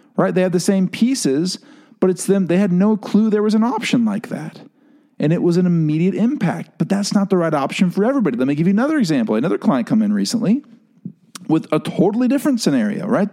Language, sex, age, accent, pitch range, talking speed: English, male, 40-59, American, 170-235 Hz, 225 wpm